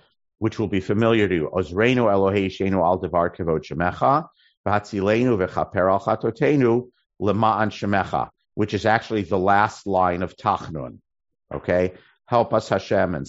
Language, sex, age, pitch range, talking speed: English, male, 50-69, 85-105 Hz, 85 wpm